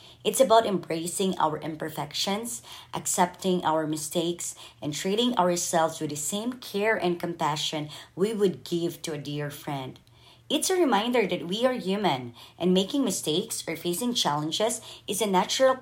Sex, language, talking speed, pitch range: male, English, 150 wpm, 150-195 Hz